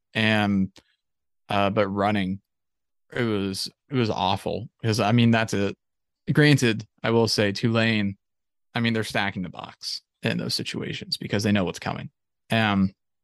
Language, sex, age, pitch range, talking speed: English, male, 20-39, 95-115 Hz, 160 wpm